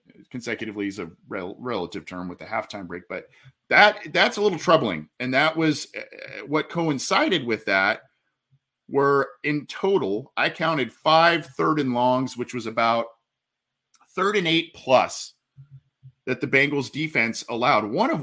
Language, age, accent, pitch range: English, 40-59, American, 120-155 Hz